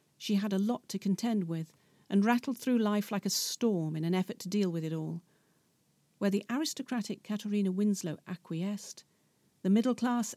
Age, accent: 50-69, British